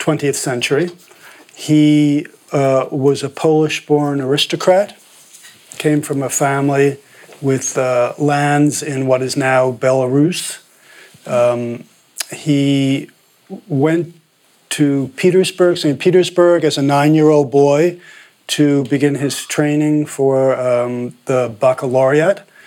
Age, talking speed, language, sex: 40-59, 105 wpm, English, male